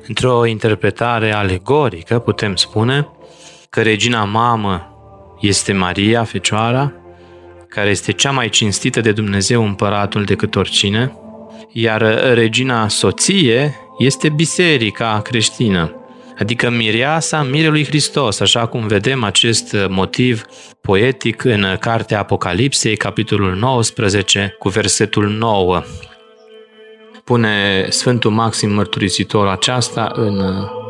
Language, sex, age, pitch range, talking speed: Romanian, male, 20-39, 100-125 Hz, 100 wpm